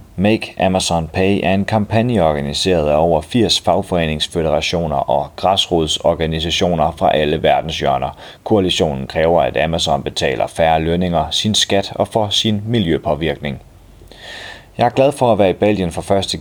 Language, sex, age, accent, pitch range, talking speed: Danish, male, 30-49, native, 85-105 Hz, 145 wpm